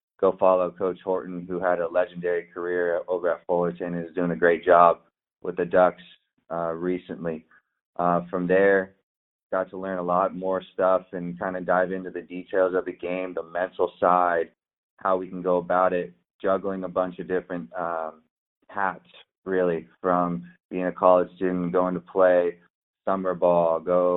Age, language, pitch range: 20-39, English, 85-95 Hz